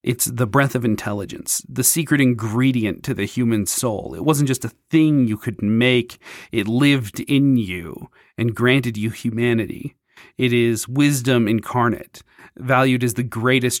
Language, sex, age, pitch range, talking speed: English, male, 40-59, 120-145 Hz, 155 wpm